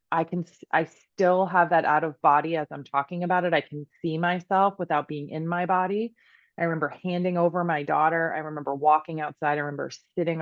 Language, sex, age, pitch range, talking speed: English, female, 20-39, 155-195 Hz, 205 wpm